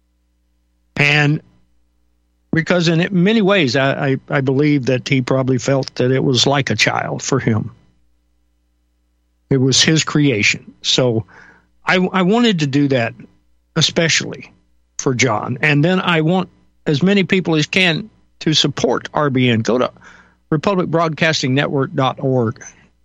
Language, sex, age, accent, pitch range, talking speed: English, male, 60-79, American, 100-165 Hz, 130 wpm